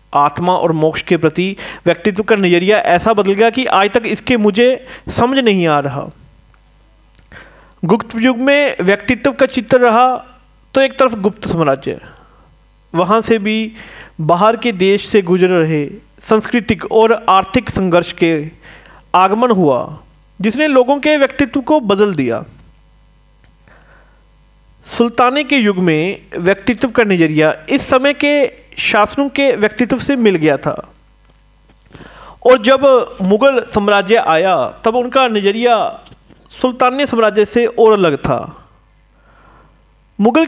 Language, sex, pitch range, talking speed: Hindi, male, 190-260 Hz, 130 wpm